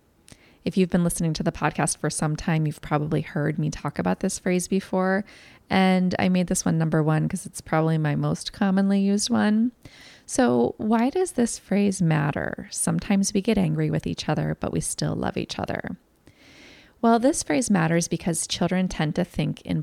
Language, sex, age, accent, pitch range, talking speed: English, female, 30-49, American, 150-200 Hz, 190 wpm